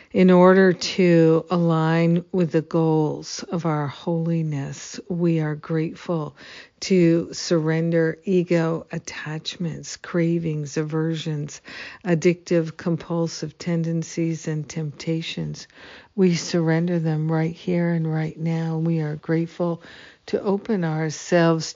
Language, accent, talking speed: English, American, 105 wpm